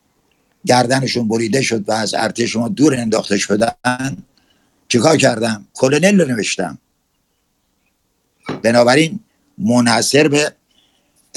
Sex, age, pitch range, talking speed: male, 60-79, 105-125 Hz, 95 wpm